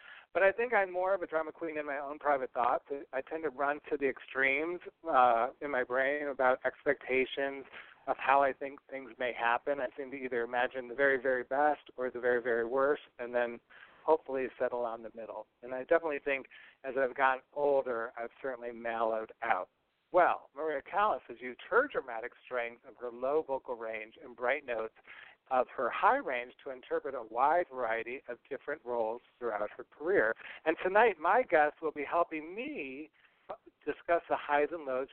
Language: English